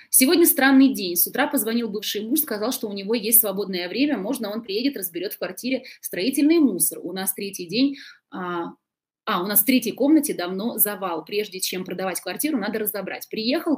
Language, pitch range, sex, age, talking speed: Russian, 185-250 Hz, female, 20-39, 185 wpm